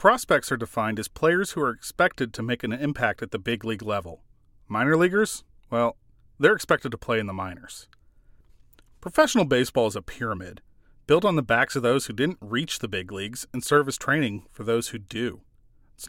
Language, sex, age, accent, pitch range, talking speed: English, male, 40-59, American, 110-150 Hz, 200 wpm